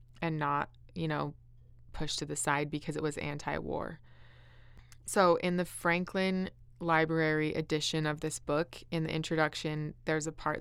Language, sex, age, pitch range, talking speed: English, female, 20-39, 150-165 Hz, 155 wpm